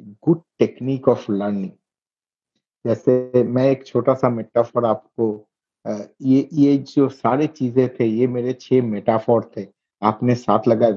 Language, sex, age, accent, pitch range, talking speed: English, male, 50-69, Indian, 110-125 Hz, 120 wpm